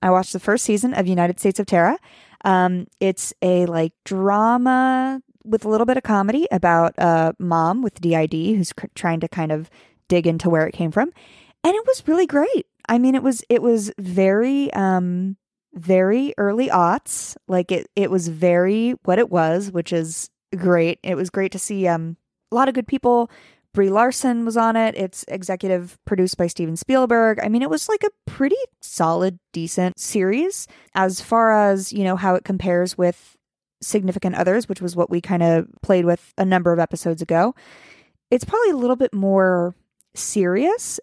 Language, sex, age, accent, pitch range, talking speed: English, female, 20-39, American, 175-230 Hz, 185 wpm